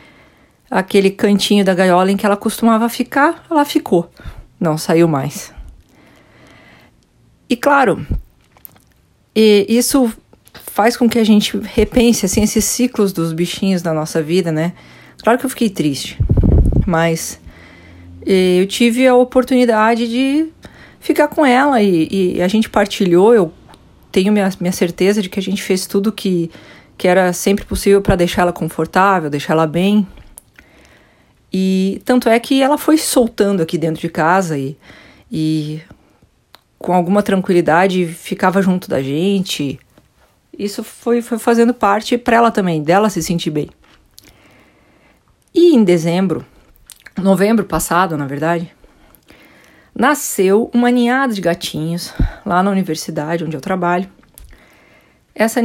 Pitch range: 175-230 Hz